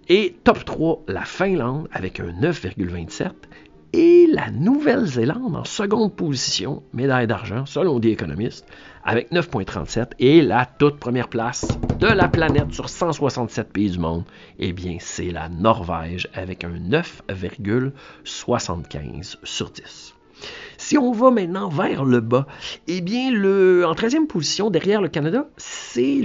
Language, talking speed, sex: French, 140 wpm, male